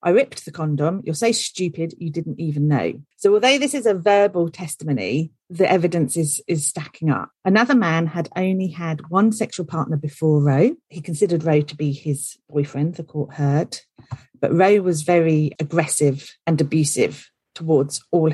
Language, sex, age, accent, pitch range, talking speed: English, female, 40-59, British, 145-175 Hz, 175 wpm